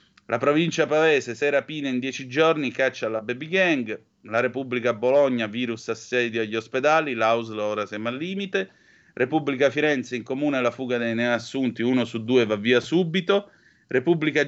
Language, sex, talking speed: Italian, male, 160 wpm